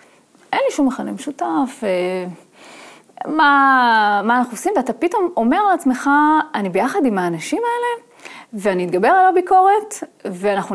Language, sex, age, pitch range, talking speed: Hebrew, female, 30-49, 215-305 Hz, 135 wpm